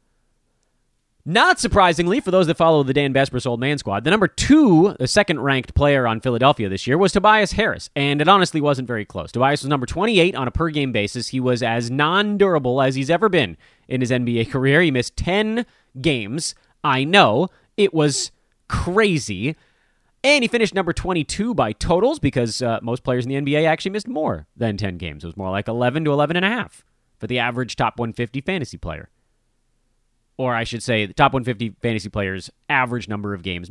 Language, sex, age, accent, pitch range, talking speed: English, male, 30-49, American, 115-165 Hz, 195 wpm